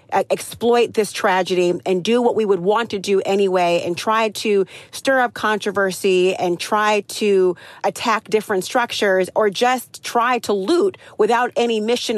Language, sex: English, female